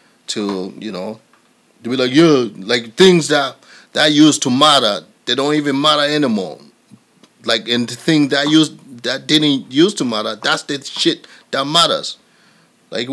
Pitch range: 120-160 Hz